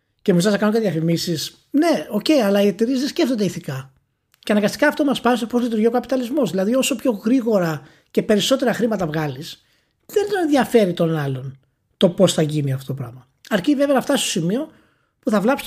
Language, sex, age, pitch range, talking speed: Greek, male, 20-39, 155-235 Hz, 210 wpm